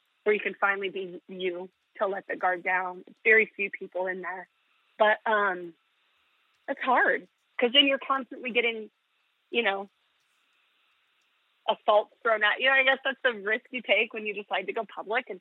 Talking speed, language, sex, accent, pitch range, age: 180 wpm, English, female, American, 200-255 Hz, 30-49